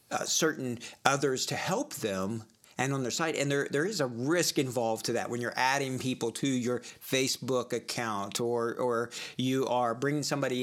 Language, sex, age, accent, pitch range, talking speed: English, male, 40-59, American, 120-150 Hz, 185 wpm